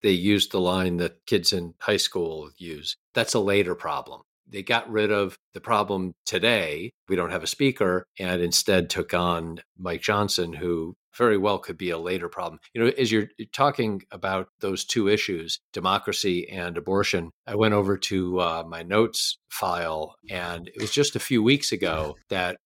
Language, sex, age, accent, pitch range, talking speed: English, male, 50-69, American, 90-105 Hz, 185 wpm